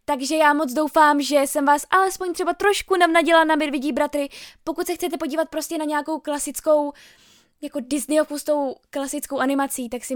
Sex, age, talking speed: female, 10-29, 165 wpm